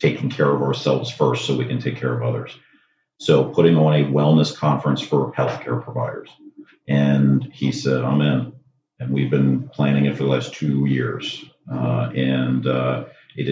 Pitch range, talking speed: 65-75 Hz, 180 wpm